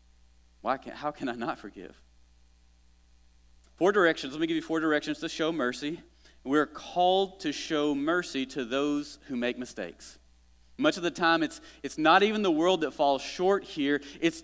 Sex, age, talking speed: male, 30-49, 180 wpm